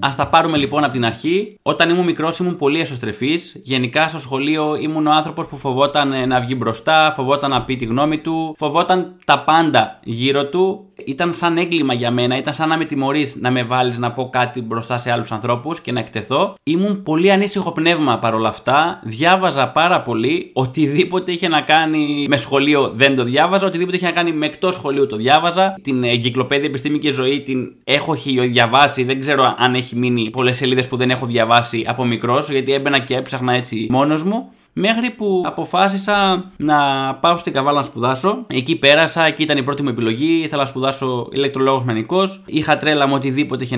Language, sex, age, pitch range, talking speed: Greek, male, 20-39, 130-175 Hz, 190 wpm